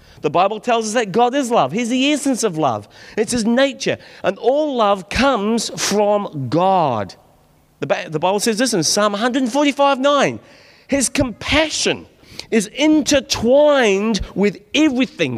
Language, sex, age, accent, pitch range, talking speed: English, male, 40-59, British, 170-260 Hz, 140 wpm